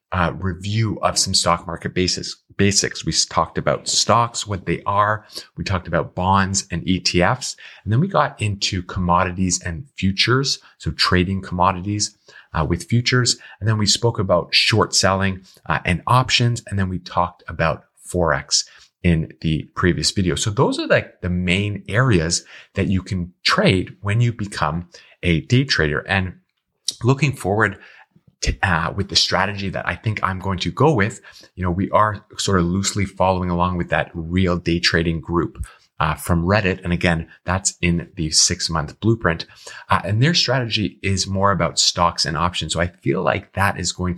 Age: 30-49